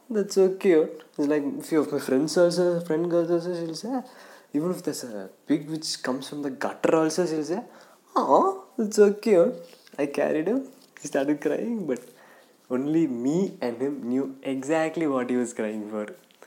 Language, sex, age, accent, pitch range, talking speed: English, male, 20-39, Indian, 120-170 Hz, 185 wpm